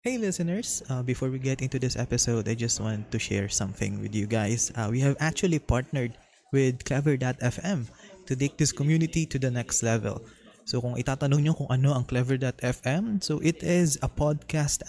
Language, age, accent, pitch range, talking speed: Filipino, 20-39, native, 120-155 Hz, 175 wpm